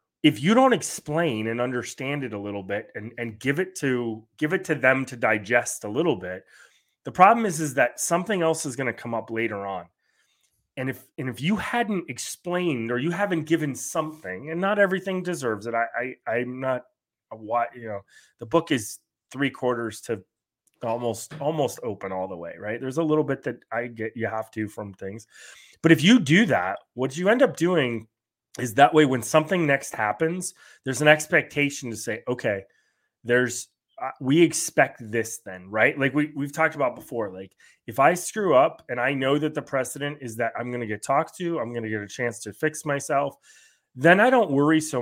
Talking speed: 210 wpm